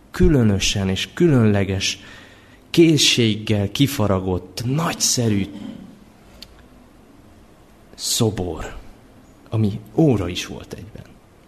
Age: 30-49